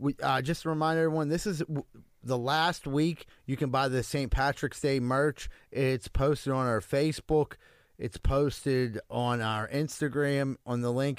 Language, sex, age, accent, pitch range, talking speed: English, male, 30-49, American, 120-145 Hz, 165 wpm